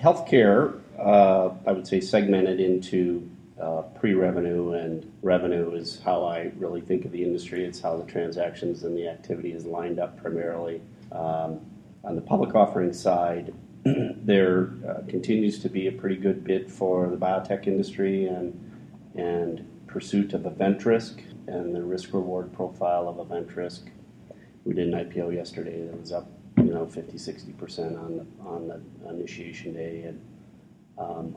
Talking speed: 155 wpm